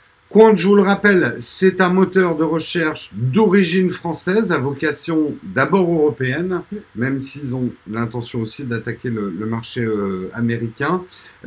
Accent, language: French, French